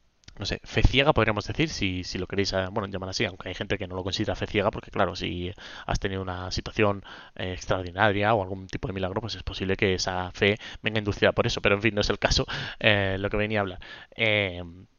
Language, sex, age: Spanish, male, 20-39